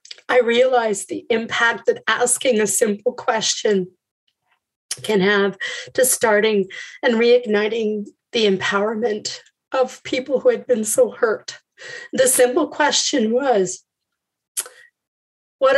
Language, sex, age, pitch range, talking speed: English, female, 30-49, 215-285 Hz, 110 wpm